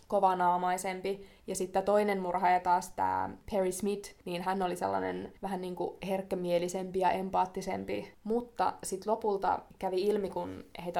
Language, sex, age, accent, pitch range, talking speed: Finnish, female, 20-39, native, 180-210 Hz, 145 wpm